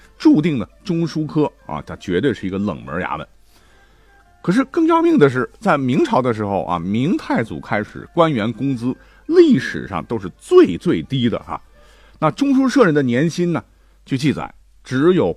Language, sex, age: Chinese, male, 50-69